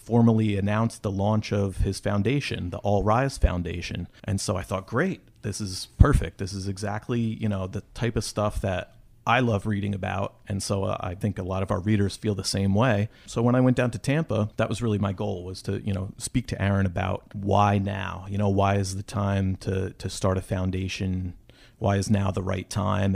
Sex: male